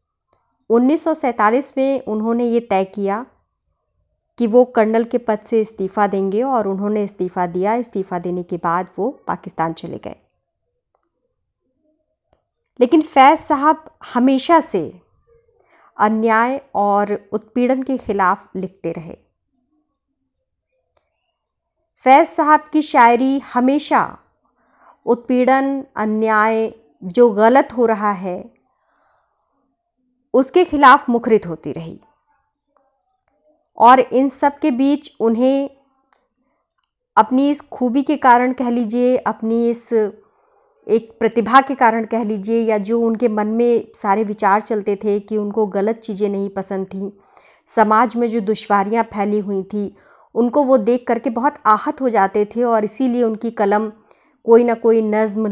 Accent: native